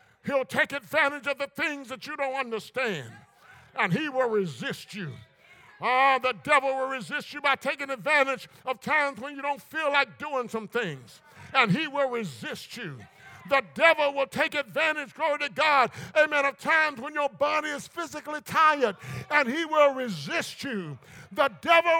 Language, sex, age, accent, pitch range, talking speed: English, male, 50-69, American, 240-315 Hz, 175 wpm